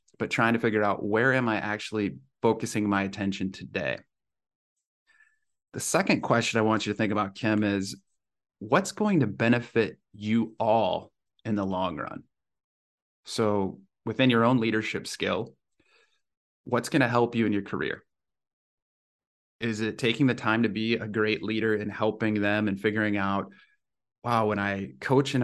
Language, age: English, 30-49